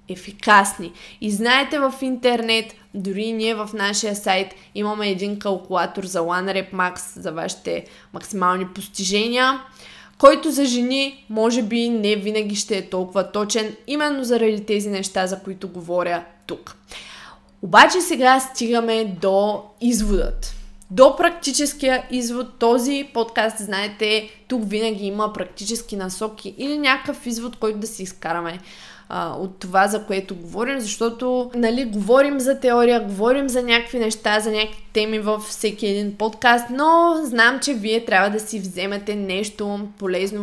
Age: 20-39